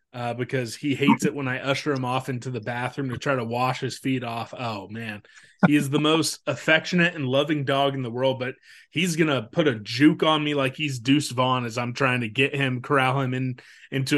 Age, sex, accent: 20-39, male, American